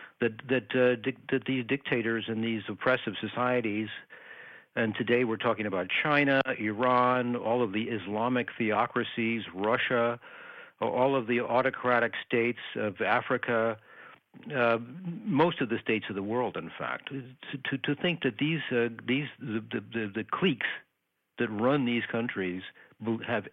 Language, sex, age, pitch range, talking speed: English, male, 60-79, 110-130 Hz, 145 wpm